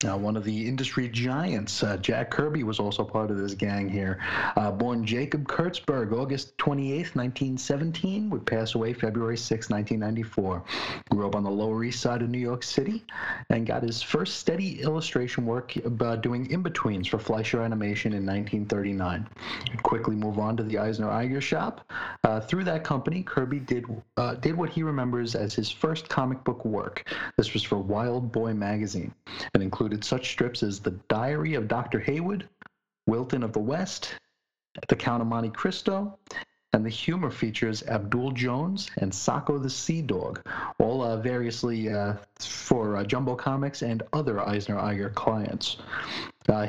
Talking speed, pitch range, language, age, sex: 170 wpm, 105-135 Hz, English, 30-49, male